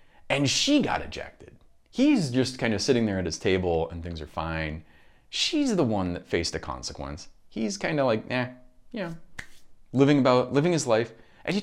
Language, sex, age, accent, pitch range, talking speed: English, male, 30-49, American, 85-135 Hz, 195 wpm